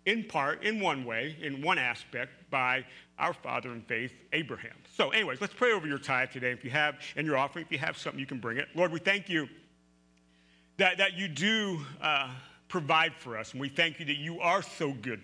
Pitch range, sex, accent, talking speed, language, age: 135-180 Hz, male, American, 225 wpm, English, 40-59